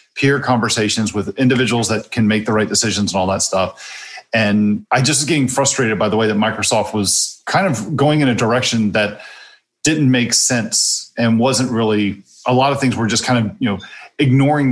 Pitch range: 105-130 Hz